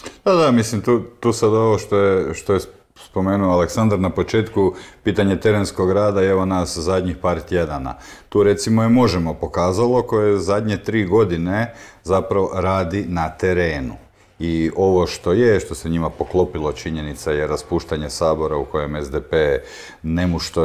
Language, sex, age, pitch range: Croatian, male, 50-69, 85-115 Hz